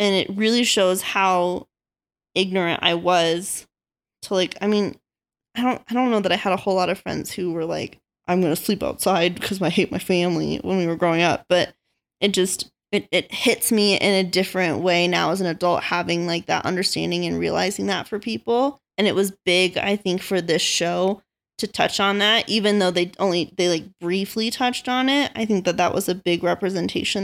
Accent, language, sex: American, English, female